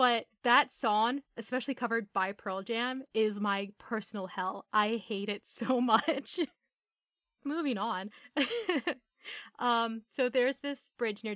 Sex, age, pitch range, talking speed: female, 10-29, 210-255 Hz, 130 wpm